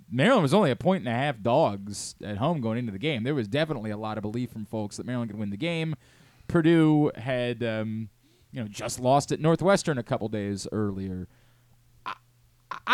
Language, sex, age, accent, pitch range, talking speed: English, male, 30-49, American, 120-160 Hz, 205 wpm